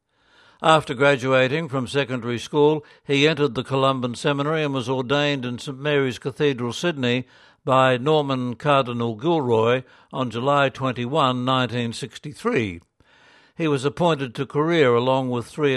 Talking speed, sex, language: 130 wpm, male, English